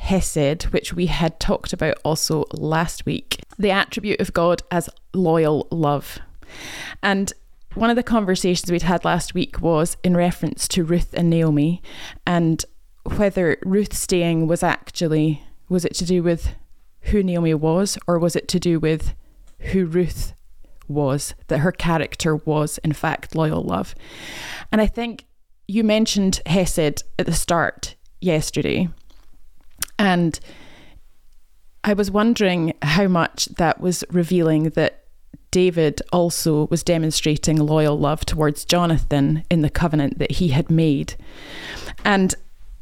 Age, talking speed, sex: 20-39, 140 wpm, female